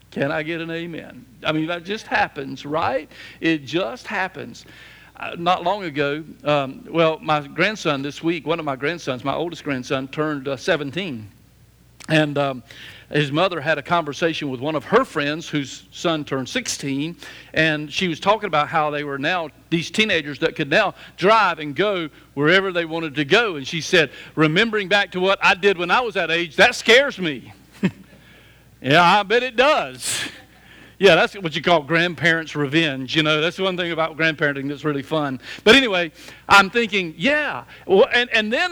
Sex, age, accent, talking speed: male, 60-79, American, 185 wpm